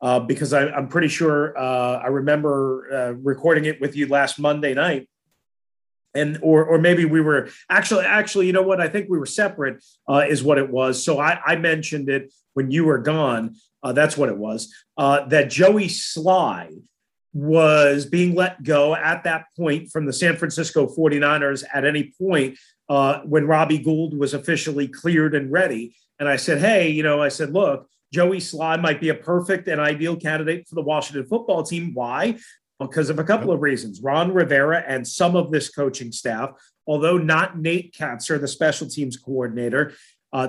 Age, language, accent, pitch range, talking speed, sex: 30-49, English, American, 140-170 Hz, 185 wpm, male